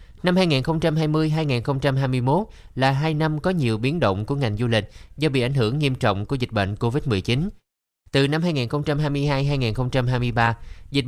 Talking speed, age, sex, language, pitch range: 145 wpm, 20-39, male, Vietnamese, 110-145 Hz